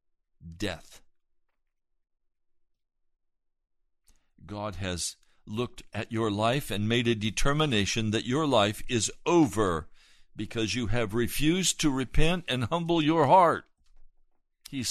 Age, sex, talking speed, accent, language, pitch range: 60-79, male, 110 wpm, American, English, 125-175 Hz